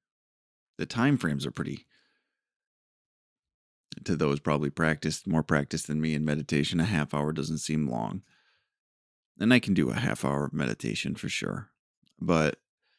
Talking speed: 150 wpm